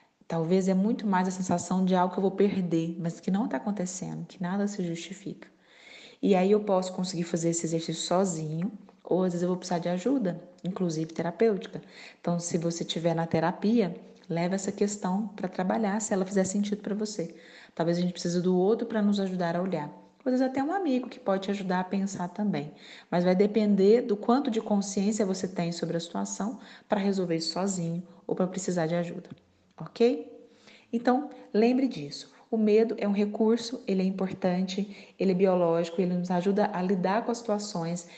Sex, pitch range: female, 175-210 Hz